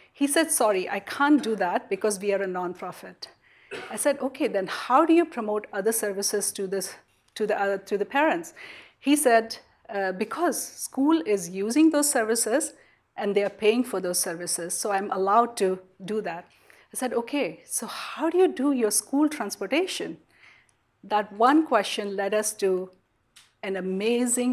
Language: English